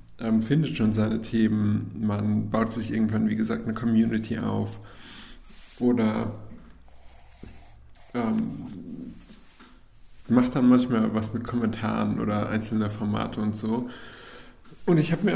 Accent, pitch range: German, 110-125 Hz